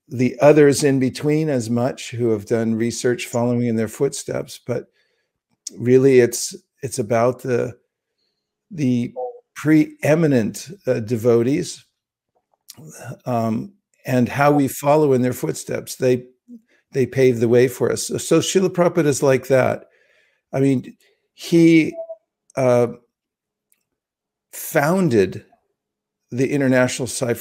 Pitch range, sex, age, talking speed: 120-145 Hz, male, 50-69, 115 wpm